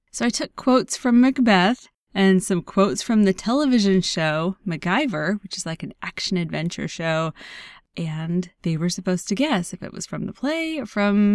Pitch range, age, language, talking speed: 185-255 Hz, 20-39, English, 180 wpm